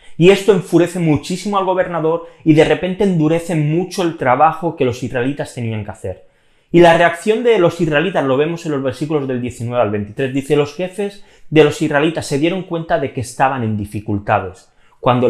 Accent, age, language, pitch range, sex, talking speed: Spanish, 30-49, Spanish, 115-165 Hz, male, 190 wpm